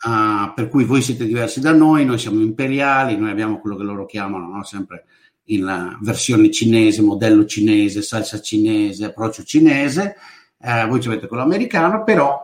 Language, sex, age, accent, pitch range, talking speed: Italian, male, 50-69, native, 110-155 Hz, 175 wpm